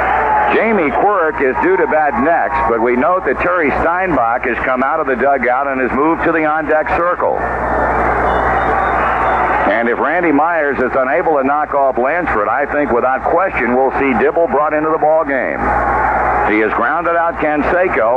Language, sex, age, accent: English, male, 60-79, American